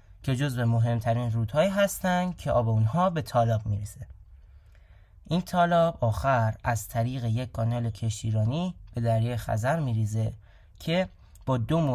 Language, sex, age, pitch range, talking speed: Persian, male, 20-39, 110-135 Hz, 145 wpm